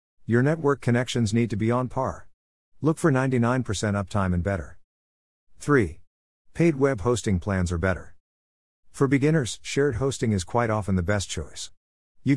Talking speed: 155 wpm